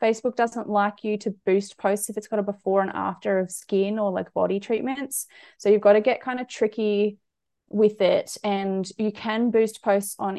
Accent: Australian